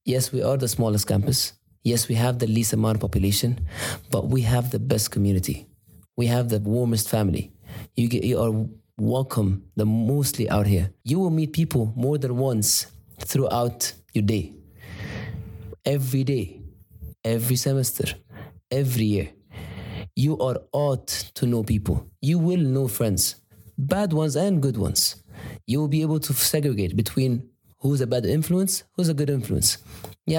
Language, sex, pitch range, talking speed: English, male, 105-140 Hz, 160 wpm